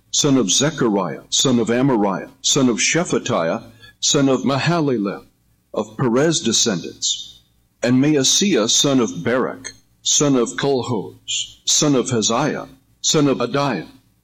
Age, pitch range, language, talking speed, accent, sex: 60-79, 110-140 Hz, English, 120 wpm, American, male